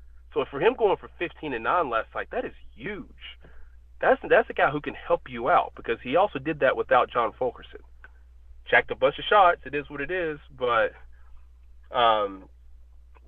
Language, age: English, 30-49